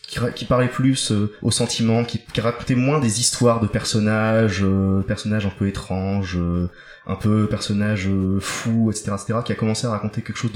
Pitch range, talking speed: 100-120 Hz, 200 wpm